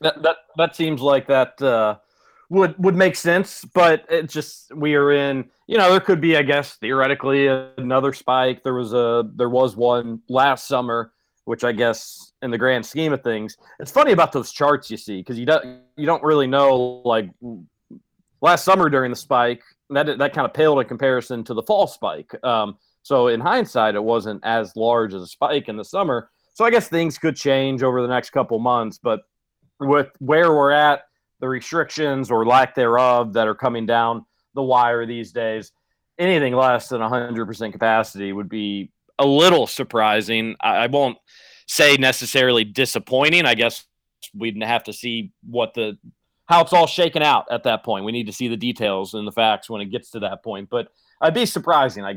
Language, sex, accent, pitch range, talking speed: English, male, American, 115-145 Hz, 200 wpm